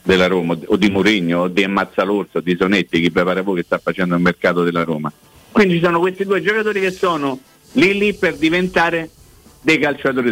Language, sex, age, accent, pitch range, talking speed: Italian, male, 50-69, native, 110-155 Hz, 205 wpm